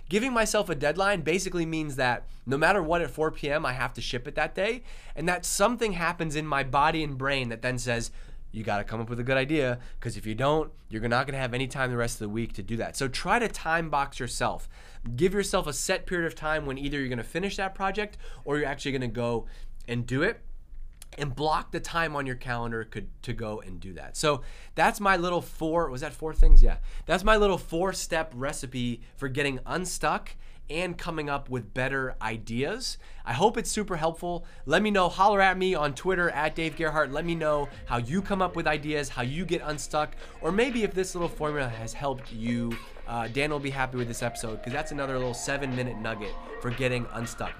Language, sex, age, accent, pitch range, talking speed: English, male, 20-39, American, 120-165 Hz, 225 wpm